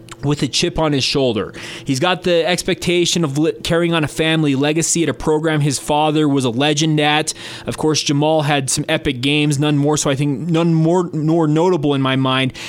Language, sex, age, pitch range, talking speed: English, male, 20-39, 135-155 Hz, 215 wpm